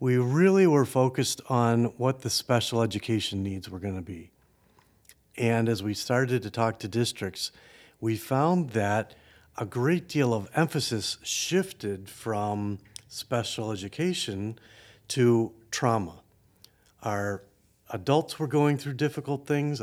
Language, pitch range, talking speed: English, 110-135 Hz, 125 wpm